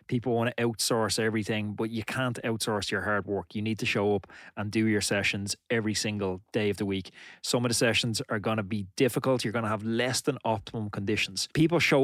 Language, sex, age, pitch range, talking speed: English, male, 20-39, 105-125 Hz, 230 wpm